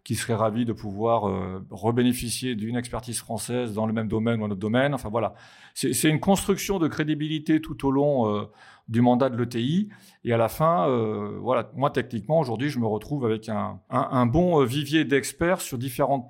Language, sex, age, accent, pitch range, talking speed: French, male, 40-59, French, 115-145 Hz, 205 wpm